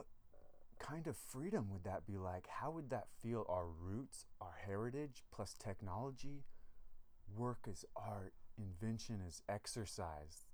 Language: English